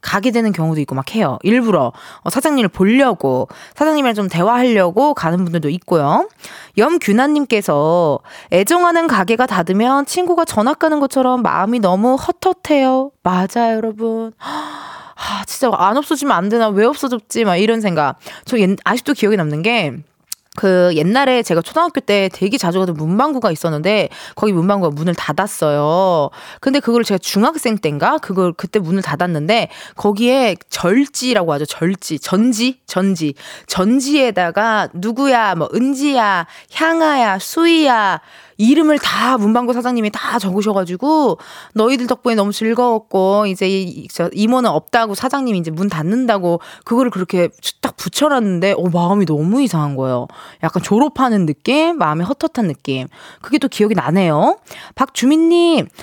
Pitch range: 185-270 Hz